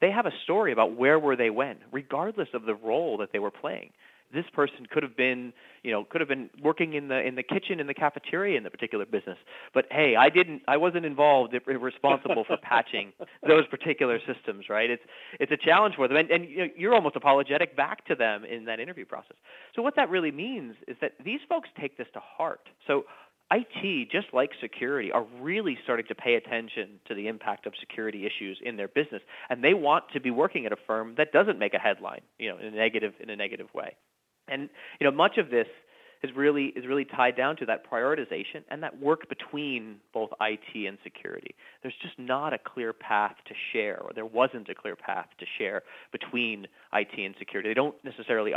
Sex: male